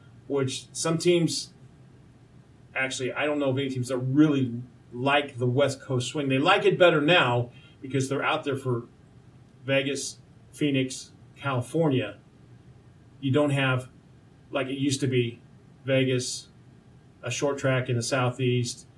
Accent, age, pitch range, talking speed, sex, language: American, 40-59, 125-140 Hz, 140 wpm, male, English